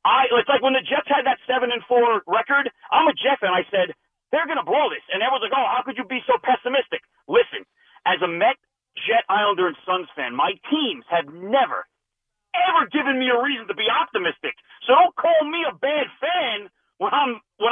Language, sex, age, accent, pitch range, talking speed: English, male, 40-59, American, 215-265 Hz, 215 wpm